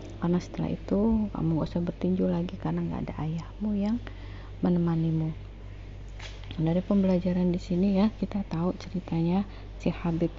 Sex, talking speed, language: female, 145 wpm, Indonesian